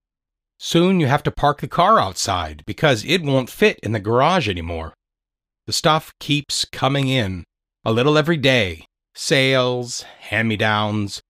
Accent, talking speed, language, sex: American, 145 wpm, English, male